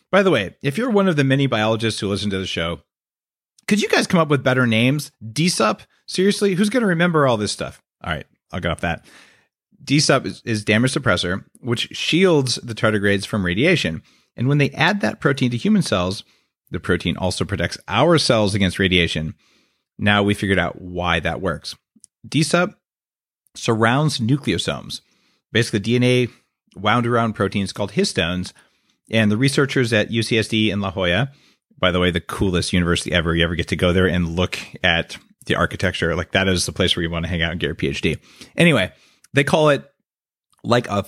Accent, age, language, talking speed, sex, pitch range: American, 40-59, English, 185 wpm, male, 95-135 Hz